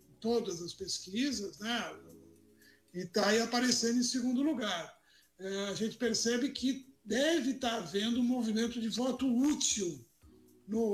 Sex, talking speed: male, 135 wpm